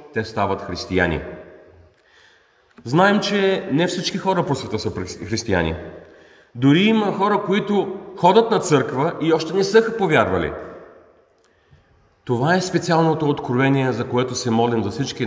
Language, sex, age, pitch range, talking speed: Bulgarian, male, 40-59, 115-190 Hz, 135 wpm